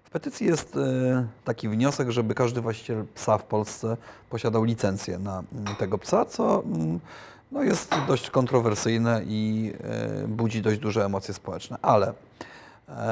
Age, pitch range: 30-49, 105-125 Hz